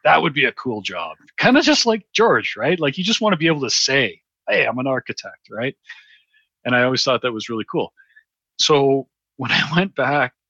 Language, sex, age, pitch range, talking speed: English, male, 40-59, 105-135 Hz, 225 wpm